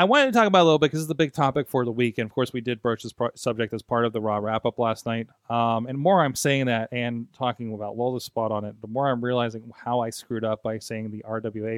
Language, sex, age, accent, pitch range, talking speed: English, male, 30-49, American, 110-130 Hz, 310 wpm